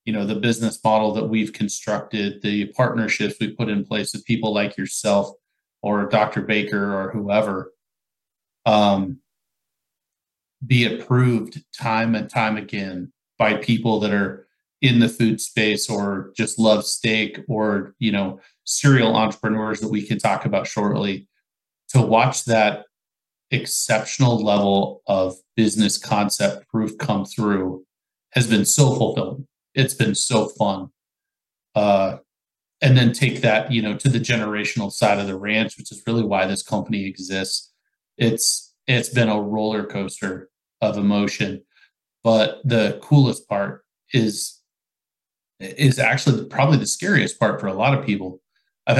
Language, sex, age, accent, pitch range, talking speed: English, male, 30-49, American, 105-115 Hz, 145 wpm